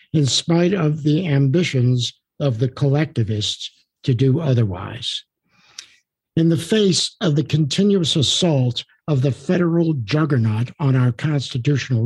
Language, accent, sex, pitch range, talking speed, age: English, American, male, 125-160 Hz, 125 wpm, 60-79